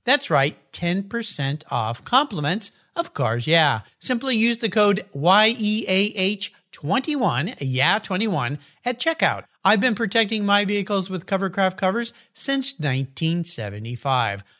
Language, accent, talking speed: English, American, 125 wpm